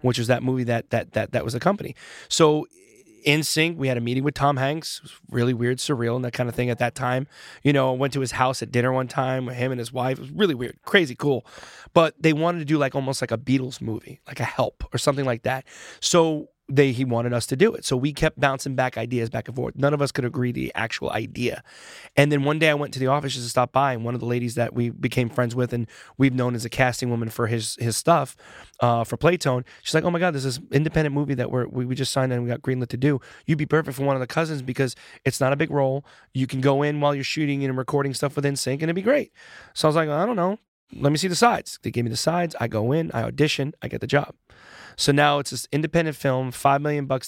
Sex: male